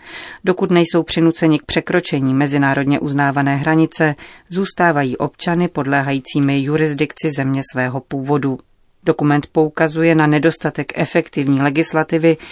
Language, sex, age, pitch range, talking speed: Czech, female, 30-49, 140-160 Hz, 100 wpm